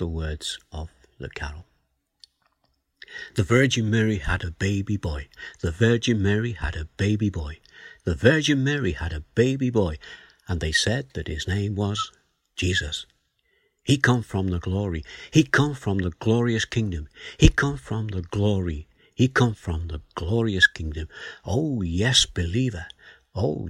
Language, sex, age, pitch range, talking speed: English, male, 60-79, 85-120 Hz, 150 wpm